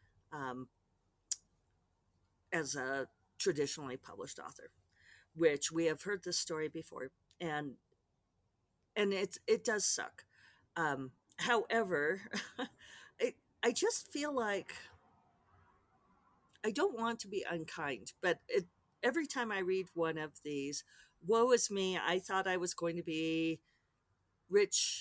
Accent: American